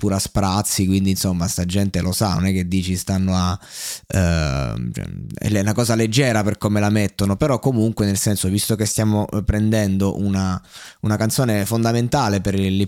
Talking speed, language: 175 wpm, Italian